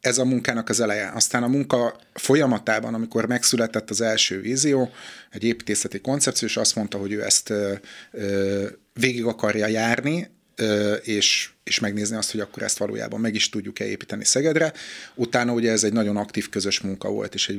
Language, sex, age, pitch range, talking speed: Hungarian, male, 30-49, 105-120 Hz, 170 wpm